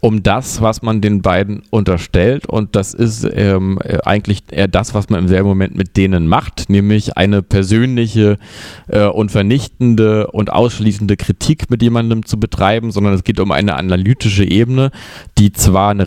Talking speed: 165 wpm